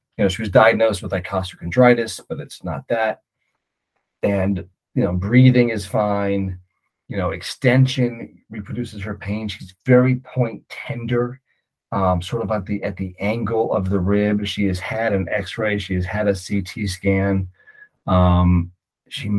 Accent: American